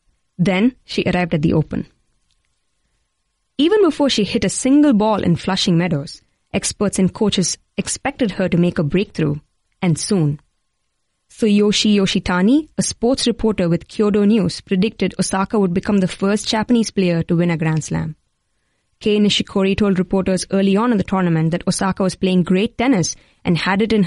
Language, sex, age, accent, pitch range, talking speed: English, female, 20-39, Indian, 170-210 Hz, 170 wpm